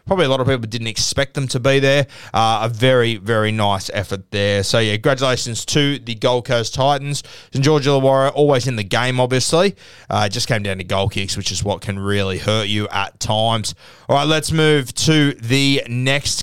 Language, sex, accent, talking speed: English, male, Australian, 210 wpm